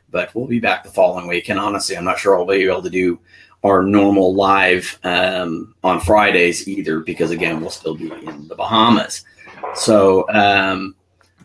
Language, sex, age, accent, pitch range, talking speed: English, male, 30-49, American, 95-115 Hz, 180 wpm